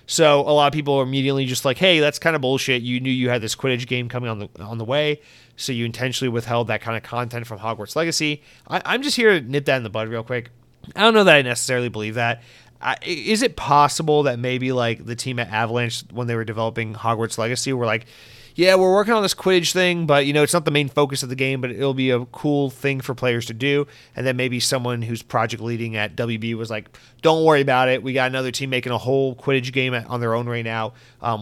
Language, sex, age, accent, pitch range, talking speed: English, male, 30-49, American, 120-140 Hz, 260 wpm